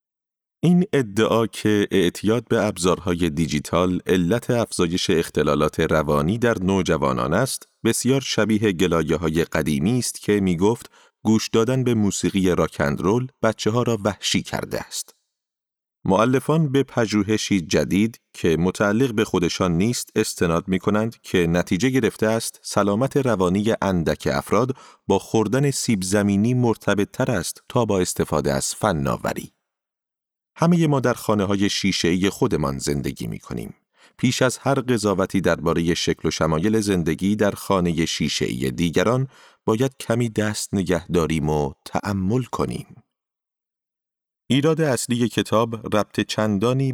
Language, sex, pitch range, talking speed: Persian, male, 90-115 Hz, 130 wpm